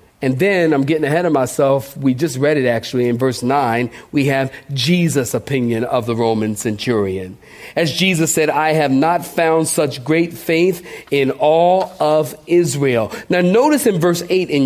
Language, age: English, 40-59